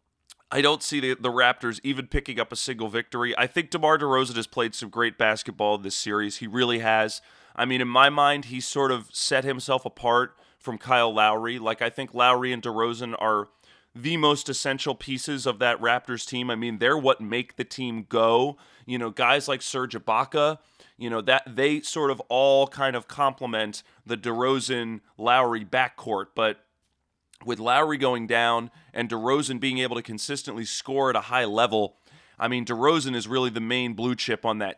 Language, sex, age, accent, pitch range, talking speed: English, male, 30-49, American, 115-135 Hz, 190 wpm